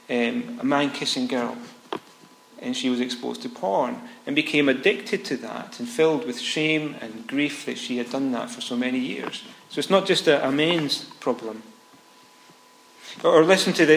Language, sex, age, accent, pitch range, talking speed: English, male, 40-59, British, 130-175 Hz, 185 wpm